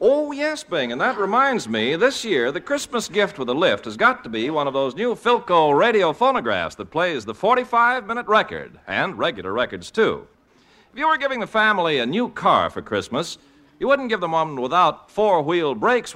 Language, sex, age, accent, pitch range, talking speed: English, male, 60-79, American, 170-240 Hz, 200 wpm